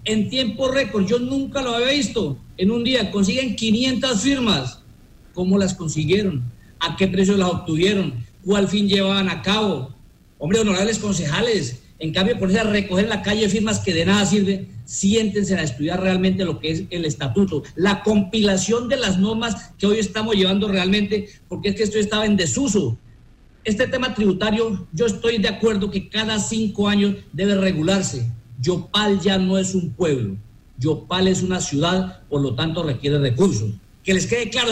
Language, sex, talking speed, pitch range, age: Spanish, male, 175 wpm, 170-215 Hz, 50-69